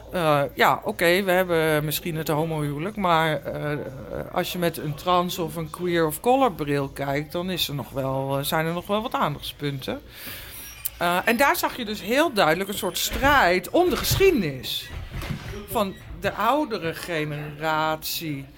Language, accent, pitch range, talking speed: Dutch, Dutch, 150-220 Hz, 170 wpm